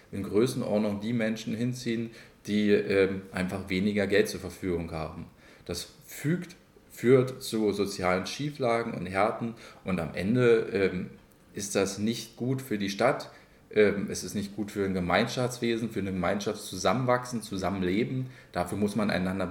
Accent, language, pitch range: German, German, 95-115 Hz